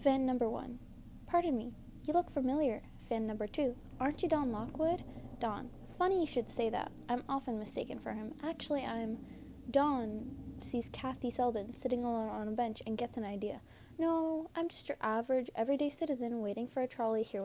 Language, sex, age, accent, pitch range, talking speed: English, female, 10-29, American, 230-280 Hz, 180 wpm